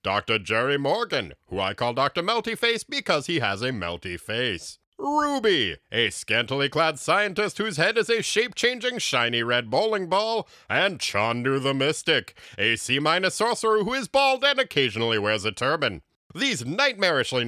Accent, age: American, 40-59